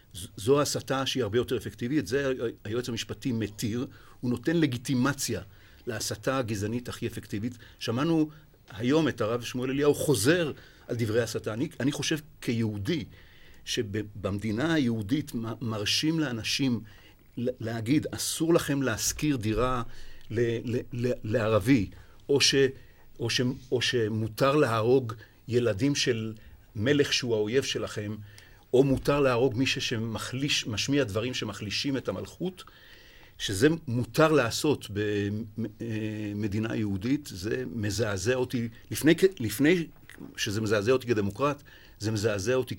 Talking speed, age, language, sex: 120 wpm, 50-69, Hebrew, male